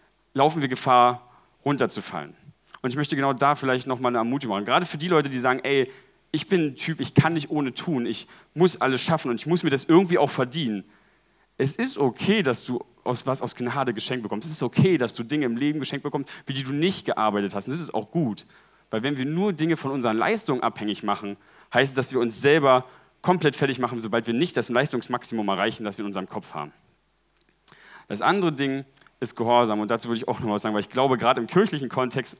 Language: German